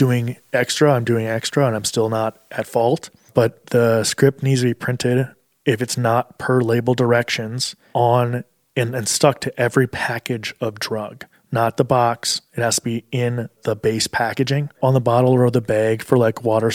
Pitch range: 115-130 Hz